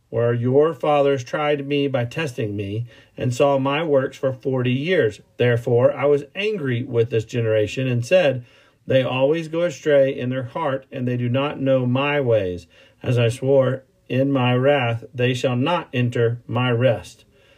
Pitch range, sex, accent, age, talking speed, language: 120-145 Hz, male, American, 40-59, 170 wpm, English